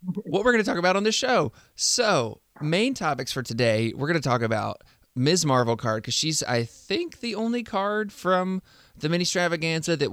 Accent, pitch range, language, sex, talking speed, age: American, 115-145 Hz, English, male, 195 wpm, 20-39